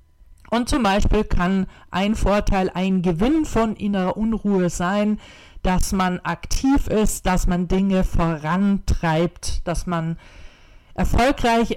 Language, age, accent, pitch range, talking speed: German, 40-59, German, 175-225 Hz, 115 wpm